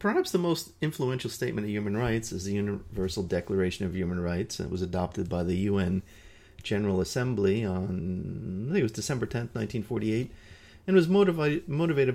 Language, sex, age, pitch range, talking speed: English, male, 30-49, 95-110 Hz, 170 wpm